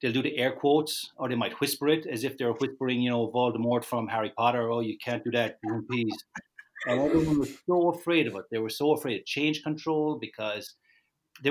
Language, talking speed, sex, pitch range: English, 220 wpm, male, 115-155 Hz